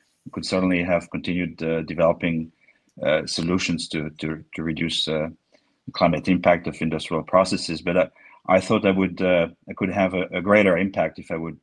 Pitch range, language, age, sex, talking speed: 80-95 Hz, English, 40-59, male, 180 wpm